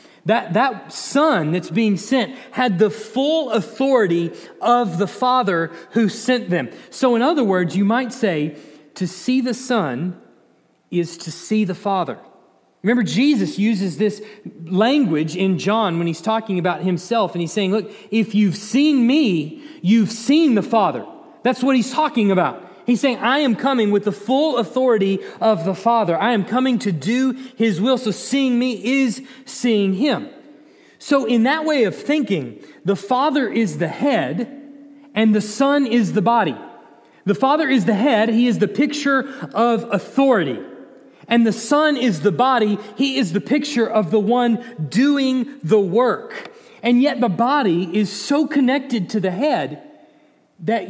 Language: English